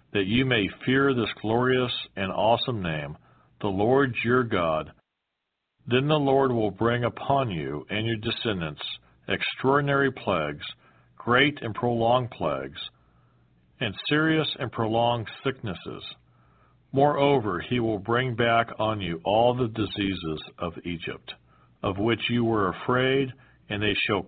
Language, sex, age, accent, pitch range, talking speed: English, male, 50-69, American, 95-125 Hz, 135 wpm